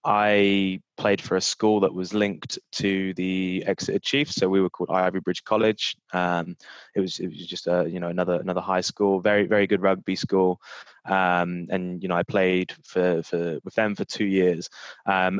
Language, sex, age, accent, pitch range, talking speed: English, male, 20-39, British, 90-100 Hz, 200 wpm